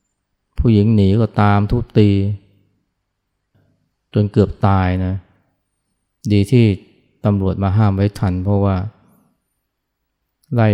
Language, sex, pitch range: Thai, male, 95-110 Hz